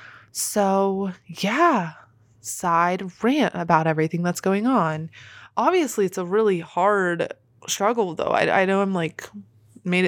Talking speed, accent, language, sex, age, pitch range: 130 wpm, American, English, female, 20-39, 170-235 Hz